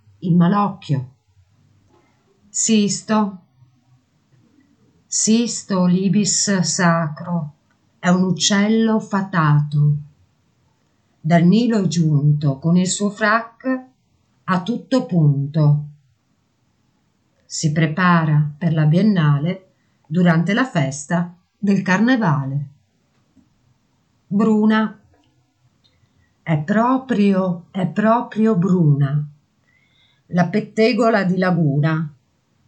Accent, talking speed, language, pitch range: native, 75 wpm, Italian, 145-200 Hz